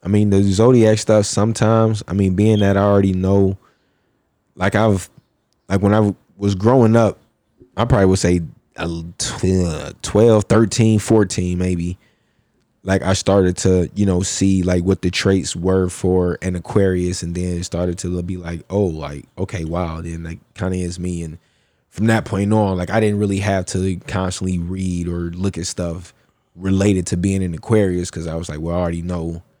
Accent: American